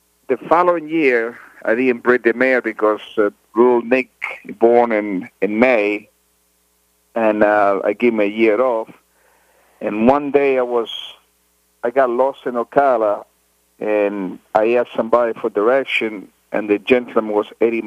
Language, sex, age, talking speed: English, male, 50-69, 150 wpm